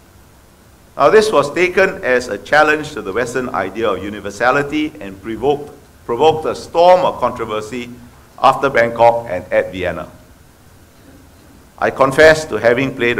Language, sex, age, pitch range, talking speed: English, male, 60-79, 100-140 Hz, 135 wpm